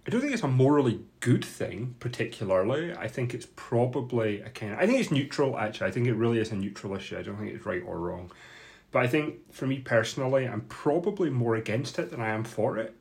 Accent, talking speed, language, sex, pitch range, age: British, 240 wpm, English, male, 105-135 Hz, 30-49